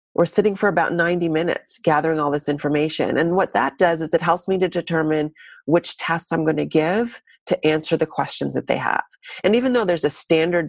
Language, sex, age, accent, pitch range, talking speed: English, female, 40-59, American, 150-170 Hz, 220 wpm